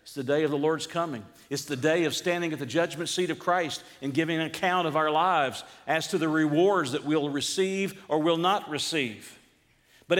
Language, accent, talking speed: English, American, 220 wpm